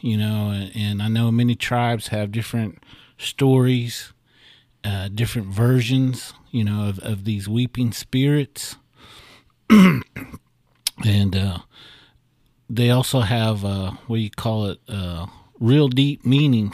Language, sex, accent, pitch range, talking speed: English, male, American, 105-125 Hz, 120 wpm